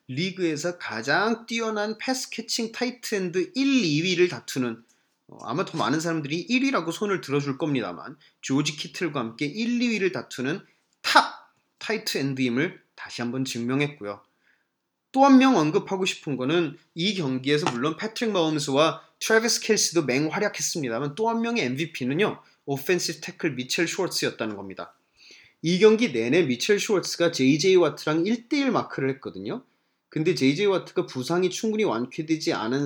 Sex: male